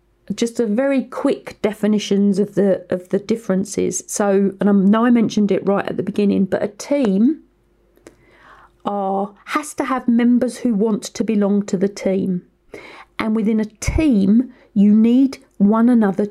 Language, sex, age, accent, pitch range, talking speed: English, female, 40-59, British, 200-235 Hz, 160 wpm